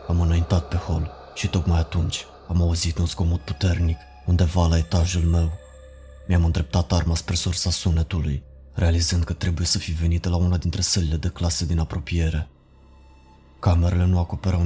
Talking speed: 160 wpm